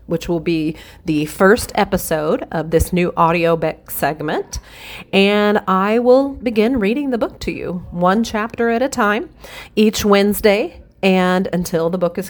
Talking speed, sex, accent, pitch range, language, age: 155 wpm, female, American, 165-210 Hz, English, 40-59